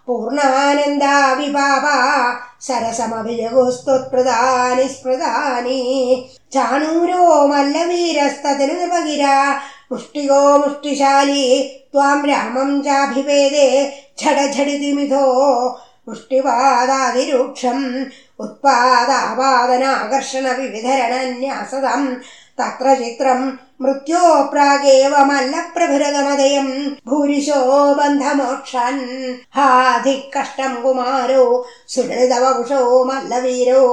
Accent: native